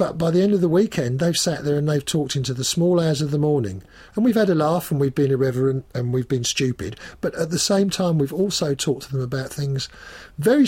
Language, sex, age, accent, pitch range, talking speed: English, male, 50-69, British, 110-155 Hz, 260 wpm